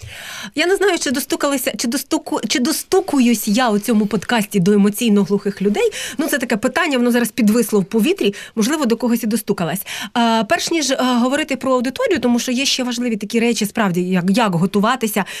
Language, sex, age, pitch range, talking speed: Ukrainian, female, 30-49, 220-275 Hz, 190 wpm